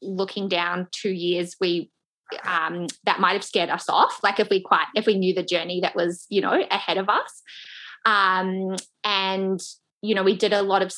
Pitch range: 175-195 Hz